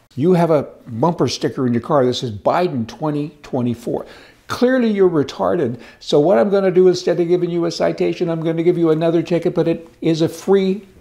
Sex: male